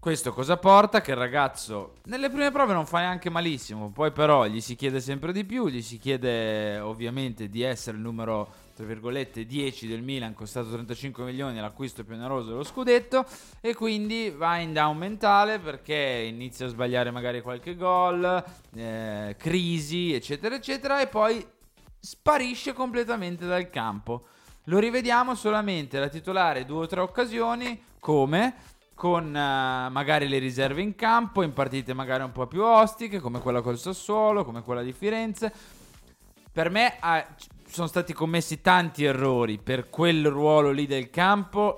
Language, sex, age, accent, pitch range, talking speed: Italian, male, 20-39, native, 125-195 Hz, 155 wpm